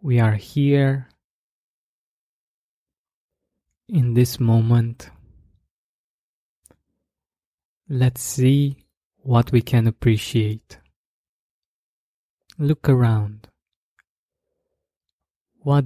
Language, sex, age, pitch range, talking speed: English, male, 20-39, 110-125 Hz, 55 wpm